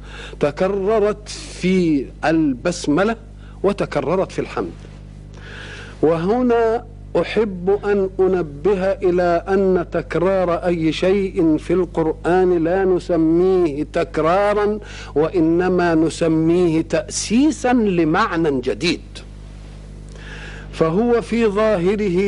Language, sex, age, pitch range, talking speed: Arabic, male, 50-69, 155-210 Hz, 75 wpm